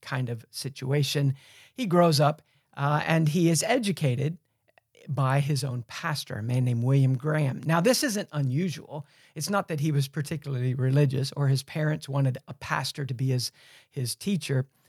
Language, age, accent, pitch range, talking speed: English, 50-69, American, 130-160 Hz, 170 wpm